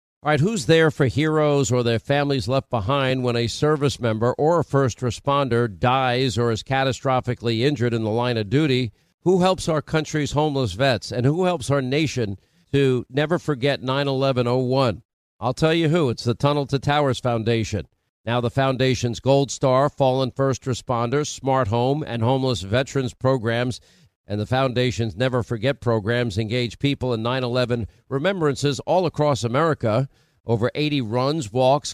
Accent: American